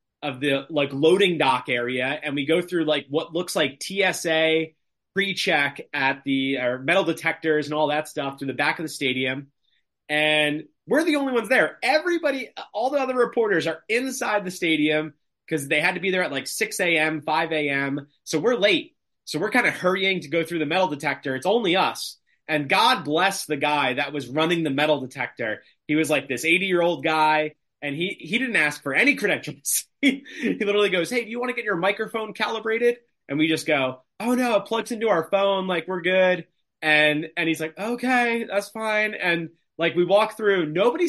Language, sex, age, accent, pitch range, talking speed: English, male, 30-49, American, 150-200 Hz, 205 wpm